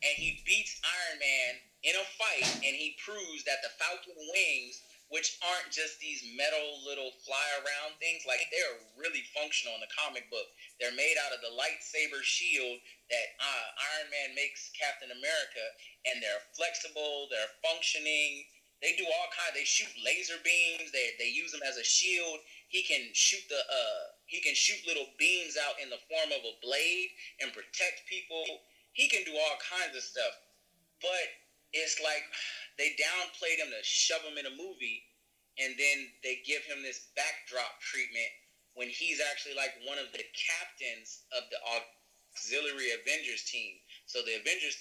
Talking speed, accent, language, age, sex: 170 wpm, American, English, 30-49, male